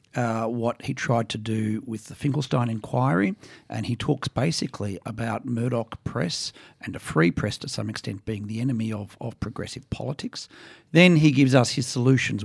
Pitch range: 110-130 Hz